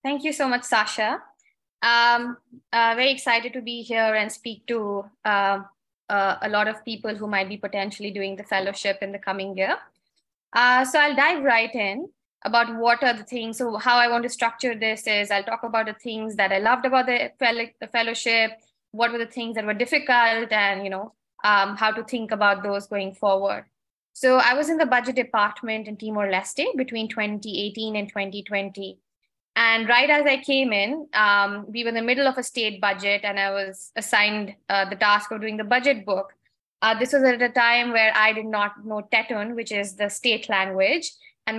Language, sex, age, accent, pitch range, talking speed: English, female, 20-39, Indian, 205-240 Hz, 205 wpm